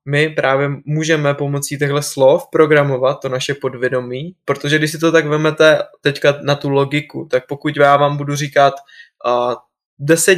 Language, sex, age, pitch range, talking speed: Czech, male, 20-39, 135-155 Hz, 160 wpm